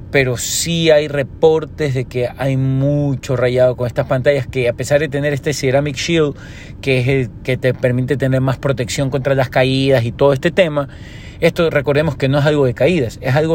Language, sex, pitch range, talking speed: Spanish, male, 125-145 Hz, 205 wpm